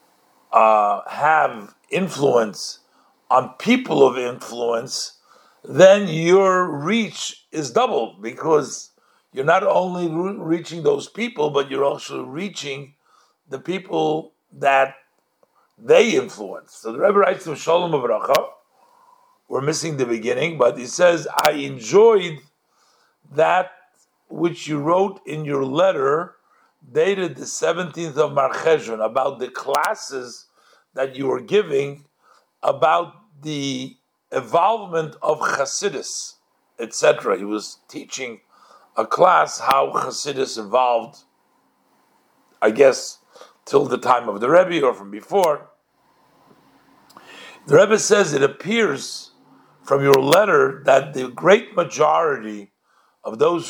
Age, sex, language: 60-79, male, English